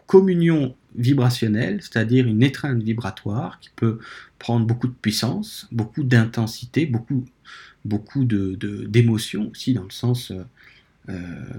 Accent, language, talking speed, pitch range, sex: French, French, 125 wpm, 110-135 Hz, male